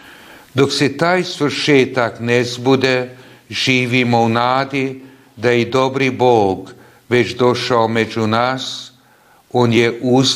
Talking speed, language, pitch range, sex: 120 wpm, Croatian, 120-135 Hz, male